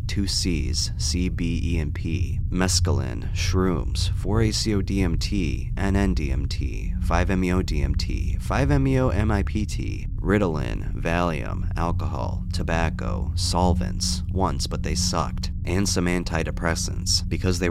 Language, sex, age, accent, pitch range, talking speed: English, male, 30-49, American, 85-100 Hz, 80 wpm